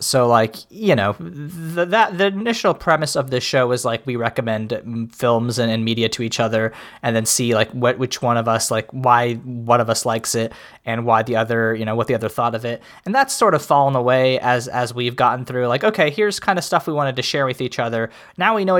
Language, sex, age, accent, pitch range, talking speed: English, male, 20-39, American, 125-180 Hz, 250 wpm